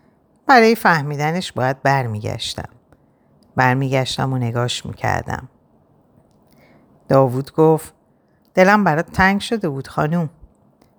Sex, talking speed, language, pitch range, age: female, 85 wpm, Persian, 125-155 Hz, 50-69